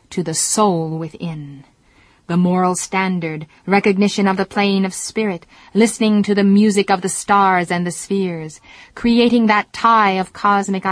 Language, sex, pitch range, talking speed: English, female, 170-200 Hz, 155 wpm